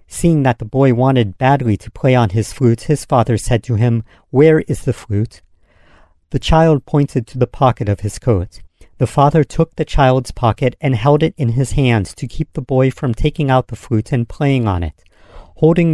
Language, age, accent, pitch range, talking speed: English, 50-69, American, 115-150 Hz, 205 wpm